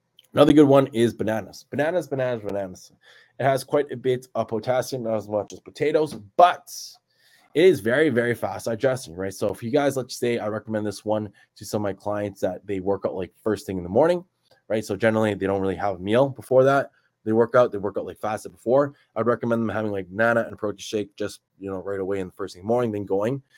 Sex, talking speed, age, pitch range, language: male, 240 wpm, 20-39, 100-125 Hz, English